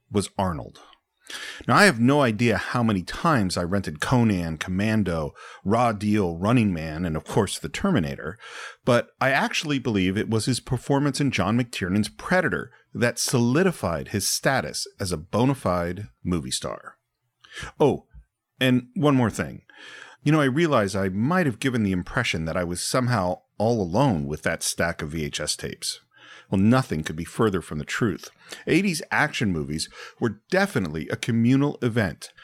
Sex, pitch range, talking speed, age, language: male, 95-130 Hz, 165 wpm, 40-59, English